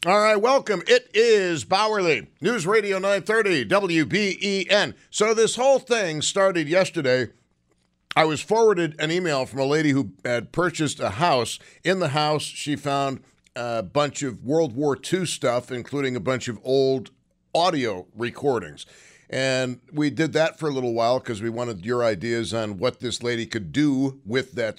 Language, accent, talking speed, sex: English, American, 165 wpm, male